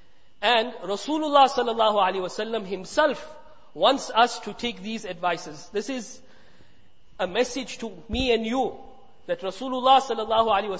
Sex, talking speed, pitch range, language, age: male, 145 wpm, 200-245 Hz, English, 50-69